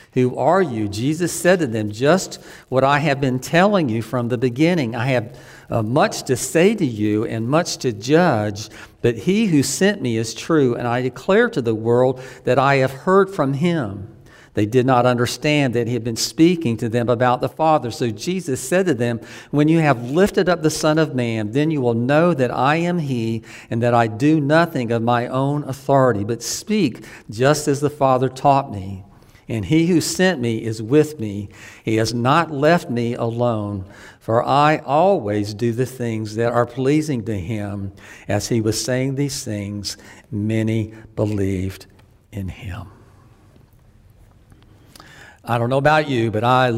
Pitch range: 110-140 Hz